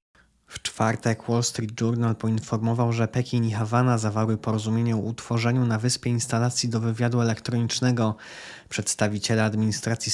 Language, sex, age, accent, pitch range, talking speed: Polish, male, 20-39, native, 115-125 Hz, 125 wpm